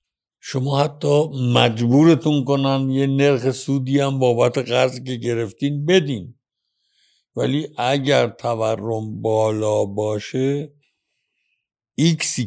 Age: 60-79